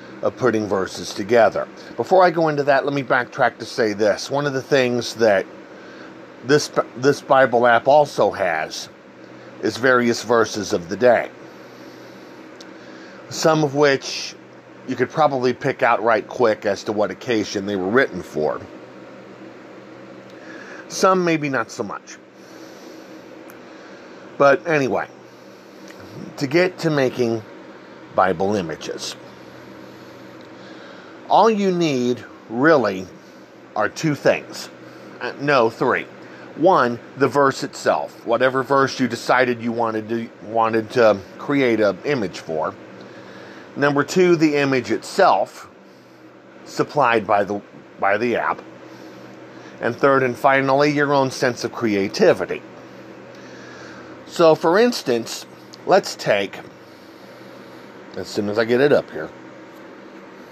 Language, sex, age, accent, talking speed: English, male, 50-69, American, 120 wpm